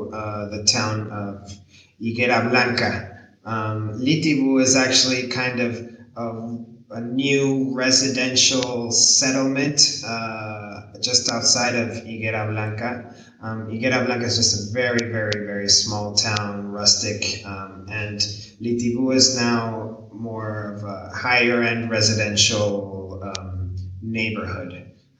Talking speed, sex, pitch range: 110 wpm, male, 105-120 Hz